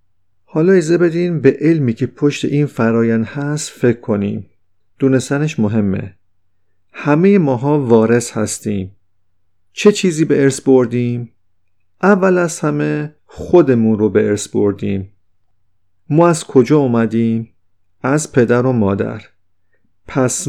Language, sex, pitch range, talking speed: Persian, male, 105-145 Hz, 115 wpm